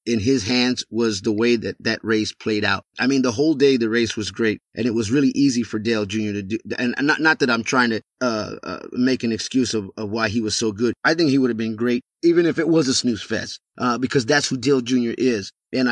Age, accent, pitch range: 30-49, American, 120-150 Hz